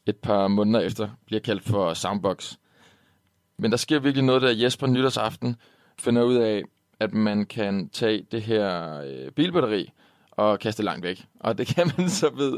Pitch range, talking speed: 110-125 Hz, 170 wpm